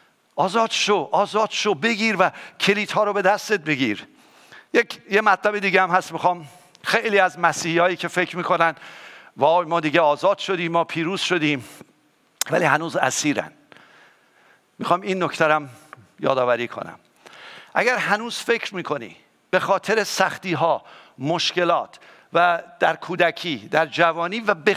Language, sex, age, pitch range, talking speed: English, male, 50-69, 170-225 Hz, 140 wpm